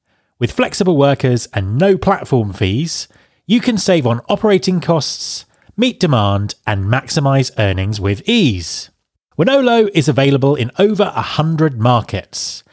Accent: British